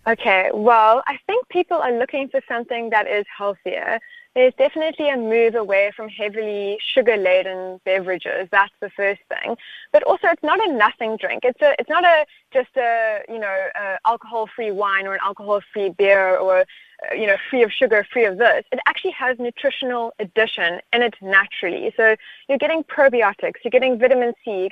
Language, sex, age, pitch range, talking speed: English, female, 20-39, 205-265 Hz, 175 wpm